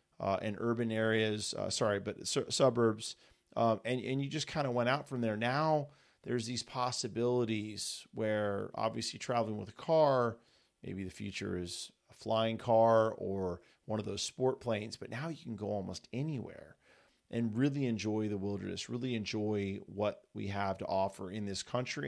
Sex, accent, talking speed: male, American, 175 wpm